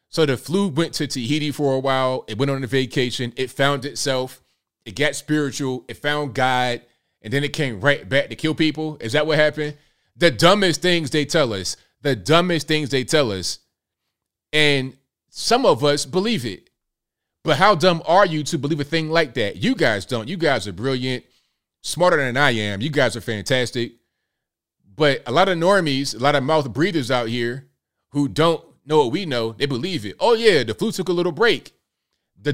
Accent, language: American, English